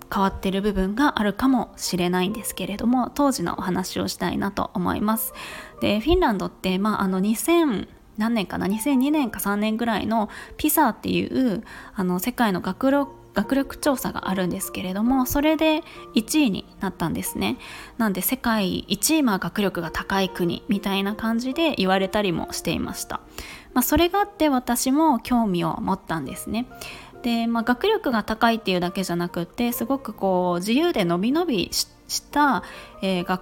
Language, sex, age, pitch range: Japanese, female, 20-39, 190-270 Hz